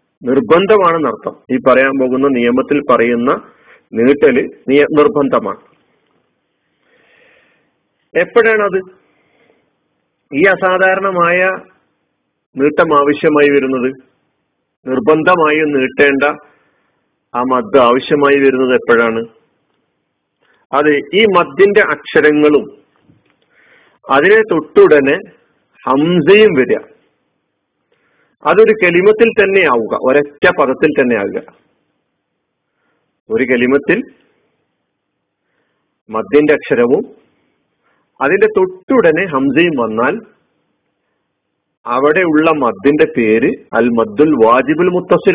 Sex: male